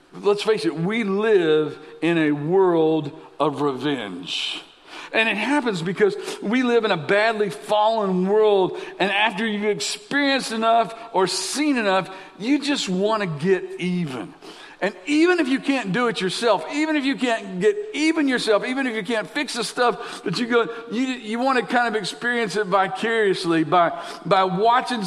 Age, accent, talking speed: 50-69, American, 170 wpm